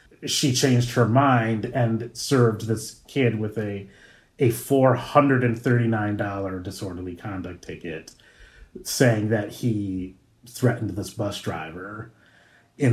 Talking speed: 105 wpm